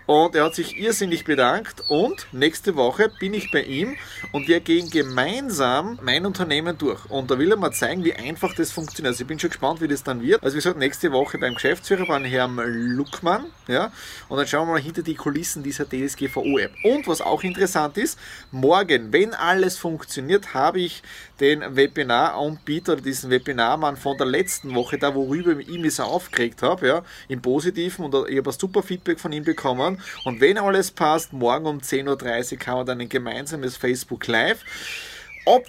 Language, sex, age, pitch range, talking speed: German, male, 30-49, 130-170 Hz, 195 wpm